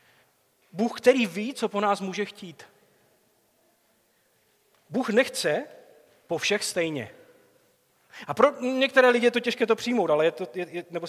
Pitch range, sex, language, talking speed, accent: 170-225 Hz, male, Czech, 145 wpm, native